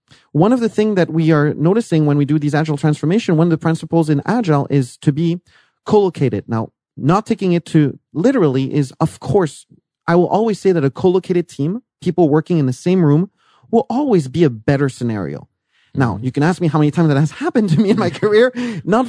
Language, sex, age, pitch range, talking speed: English, male, 30-49, 140-190 Hz, 220 wpm